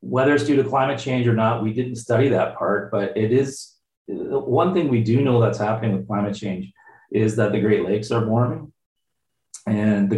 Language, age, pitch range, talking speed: English, 40-59, 100-120 Hz, 205 wpm